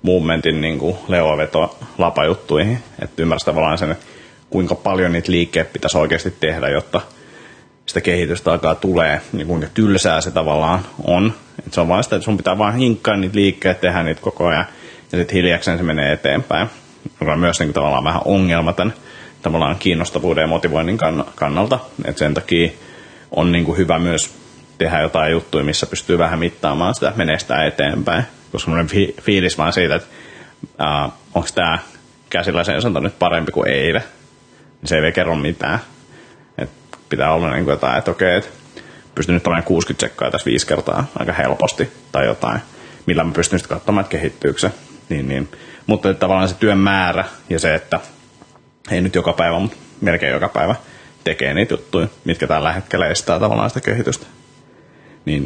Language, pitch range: Finnish, 80-95 Hz